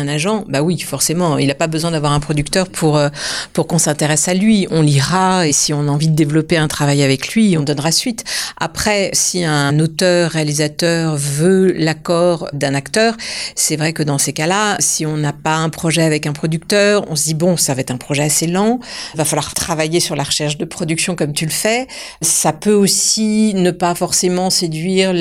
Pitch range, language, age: 155-195 Hz, French, 50-69